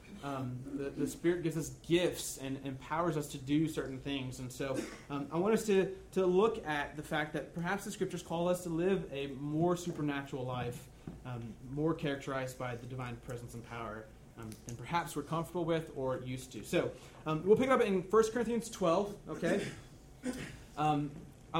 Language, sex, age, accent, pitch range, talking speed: English, male, 30-49, American, 135-185 Hz, 190 wpm